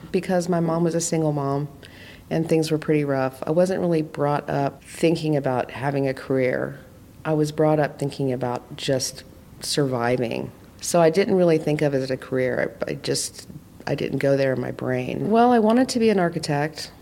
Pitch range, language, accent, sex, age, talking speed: 135-155 Hz, English, American, female, 40-59, 195 wpm